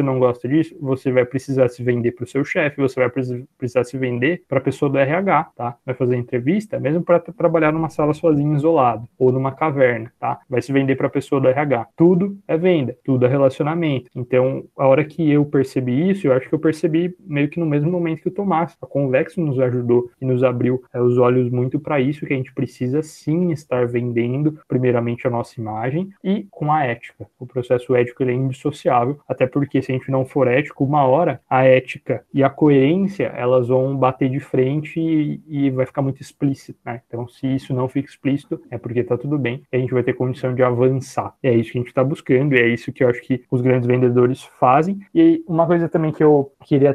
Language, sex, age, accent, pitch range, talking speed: Portuguese, male, 20-39, Brazilian, 125-155 Hz, 225 wpm